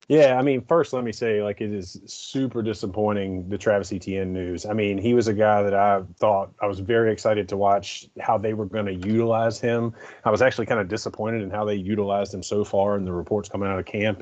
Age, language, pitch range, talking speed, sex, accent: 30-49, English, 95-110 Hz, 245 wpm, male, American